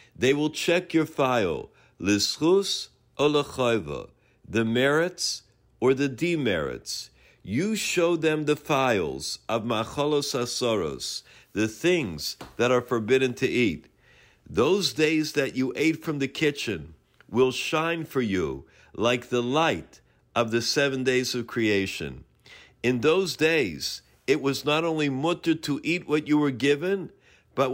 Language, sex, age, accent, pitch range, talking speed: English, male, 50-69, American, 125-155 Hz, 135 wpm